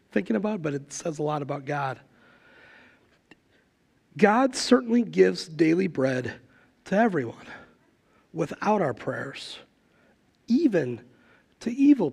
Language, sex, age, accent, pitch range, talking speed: English, male, 40-59, American, 165-240 Hz, 110 wpm